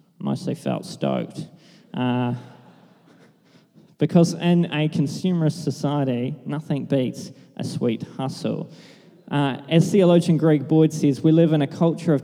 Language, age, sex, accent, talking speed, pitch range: English, 20-39, male, Australian, 125 wpm, 130-160 Hz